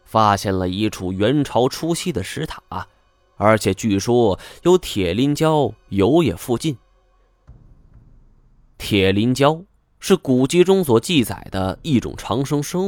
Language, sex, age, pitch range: Chinese, male, 20-39, 95-145 Hz